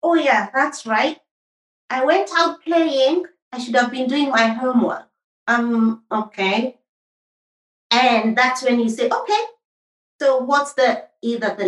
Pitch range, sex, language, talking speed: 250-340 Hz, female, English, 145 wpm